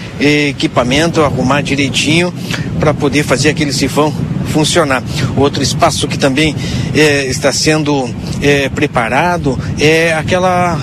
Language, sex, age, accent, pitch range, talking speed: Portuguese, male, 60-79, Brazilian, 140-165 Hz, 110 wpm